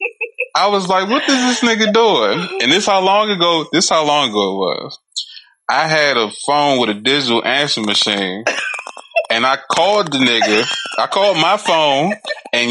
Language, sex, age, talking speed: English, male, 20-39, 180 wpm